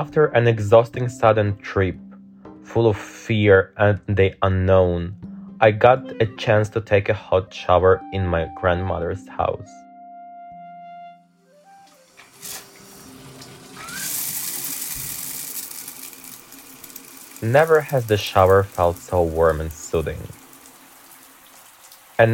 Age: 20-39